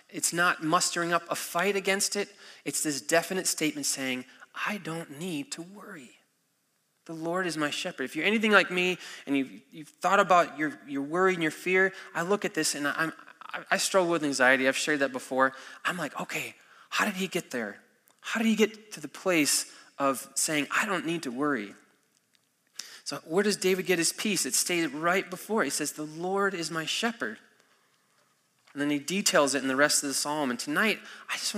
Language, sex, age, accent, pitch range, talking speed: English, male, 20-39, American, 150-190 Hz, 205 wpm